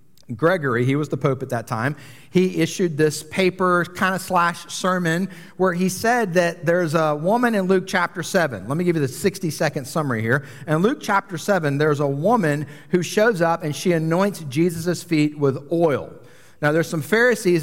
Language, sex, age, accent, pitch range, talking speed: English, male, 40-59, American, 145-195 Hz, 190 wpm